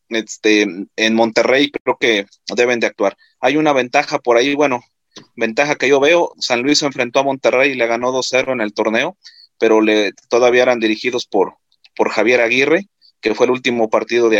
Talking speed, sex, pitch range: 190 wpm, male, 110-130 Hz